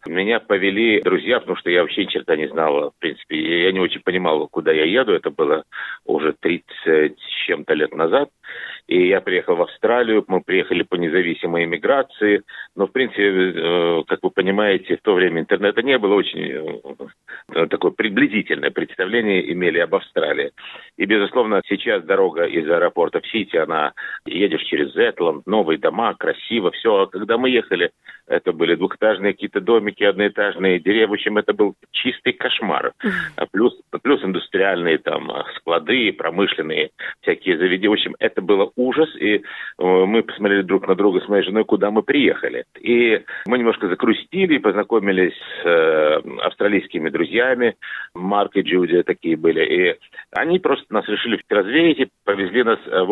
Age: 50-69